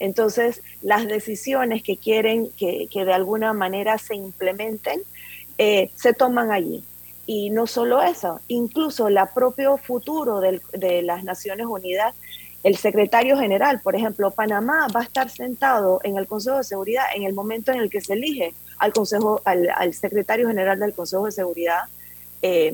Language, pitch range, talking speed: Spanish, 195-240 Hz, 160 wpm